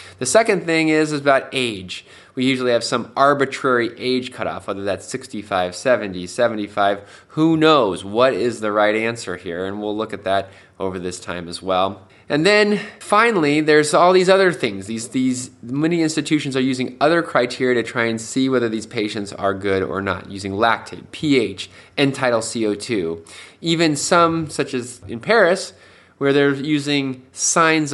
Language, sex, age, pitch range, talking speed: English, male, 20-39, 100-145 Hz, 170 wpm